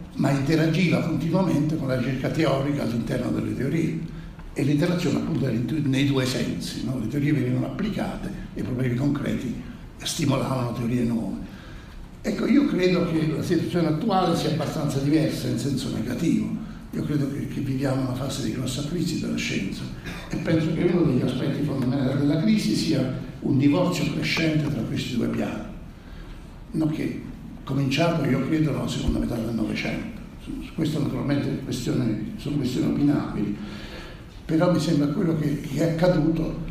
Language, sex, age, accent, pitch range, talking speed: Italian, male, 60-79, native, 135-165 Hz, 145 wpm